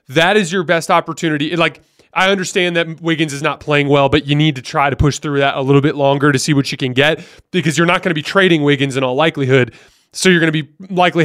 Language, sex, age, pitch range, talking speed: English, male, 20-39, 145-180 Hz, 265 wpm